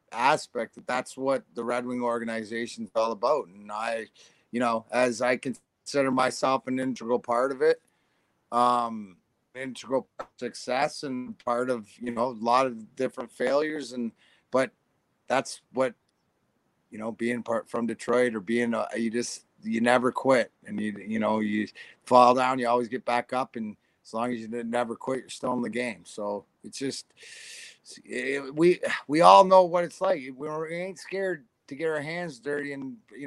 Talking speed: 180 wpm